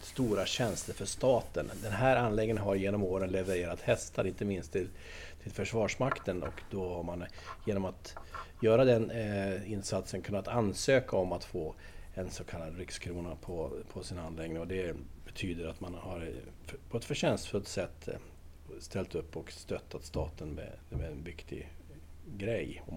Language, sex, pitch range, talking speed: Swedish, male, 80-105 Hz, 155 wpm